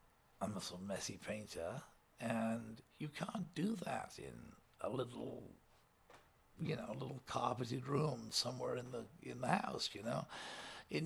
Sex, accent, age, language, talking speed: male, American, 60-79, English, 155 wpm